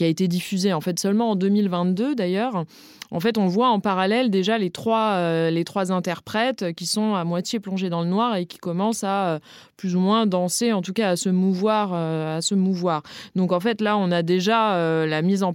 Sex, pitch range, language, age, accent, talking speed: female, 175-220 Hz, French, 20-39, French, 230 wpm